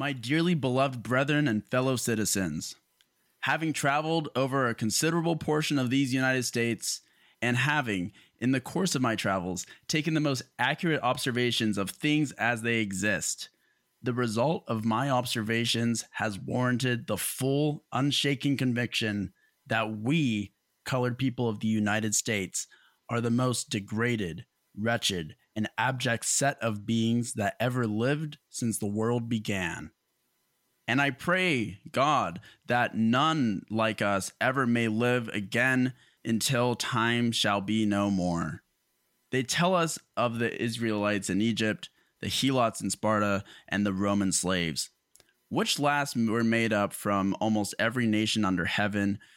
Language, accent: English, American